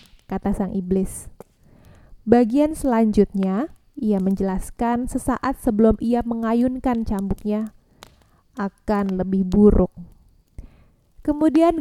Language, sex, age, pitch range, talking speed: Indonesian, female, 20-39, 205-245 Hz, 80 wpm